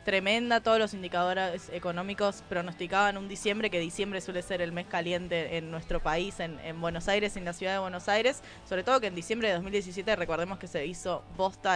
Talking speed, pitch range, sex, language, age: 205 wpm, 170-200 Hz, female, Spanish, 20-39